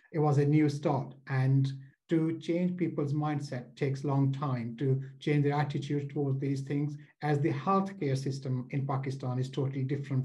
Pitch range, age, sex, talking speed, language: 135-160 Hz, 60-79, male, 175 wpm, English